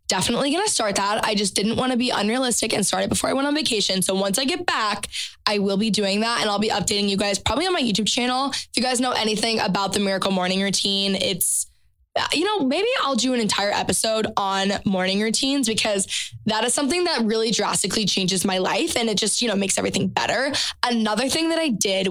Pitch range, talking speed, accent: 200-240 Hz, 235 wpm, American